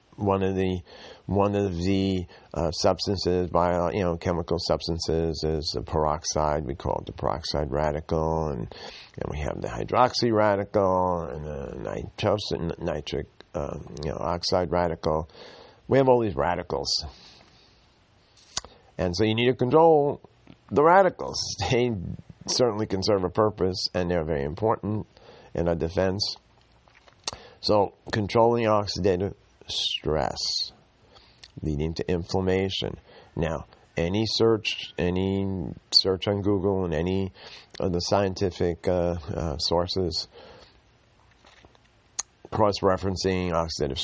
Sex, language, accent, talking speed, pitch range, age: male, English, American, 120 wpm, 85-105 Hz, 50-69